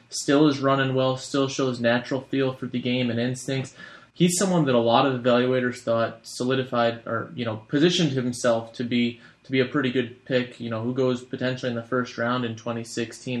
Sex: male